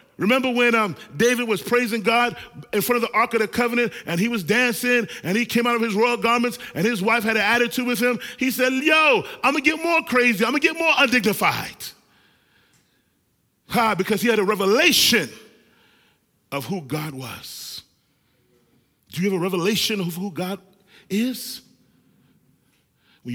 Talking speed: 180 wpm